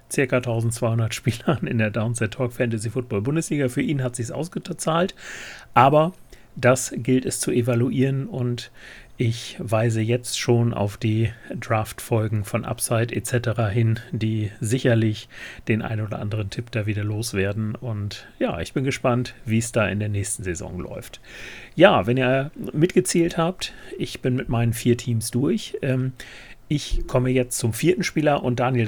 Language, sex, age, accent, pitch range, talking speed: German, male, 40-59, German, 115-135 Hz, 160 wpm